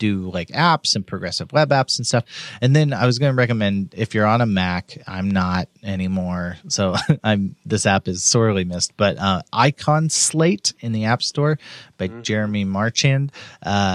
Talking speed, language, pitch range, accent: 185 wpm, English, 100-135 Hz, American